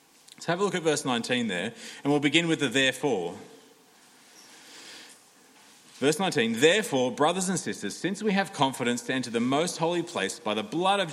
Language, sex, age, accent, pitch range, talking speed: English, male, 30-49, Australian, 140-190 Hz, 185 wpm